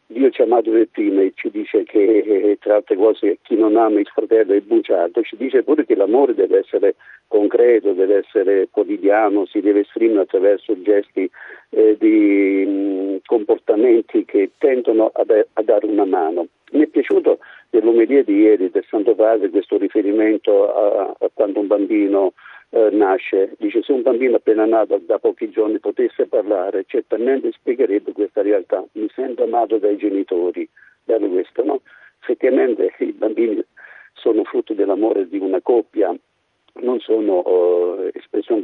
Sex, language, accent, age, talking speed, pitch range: male, Italian, native, 50-69, 155 wpm, 350-440 Hz